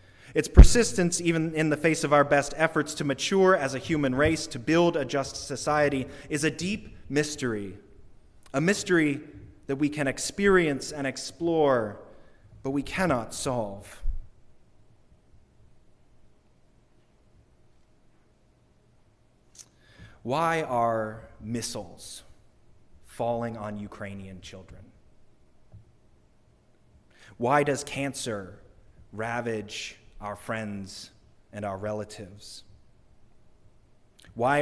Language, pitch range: English, 105-145 Hz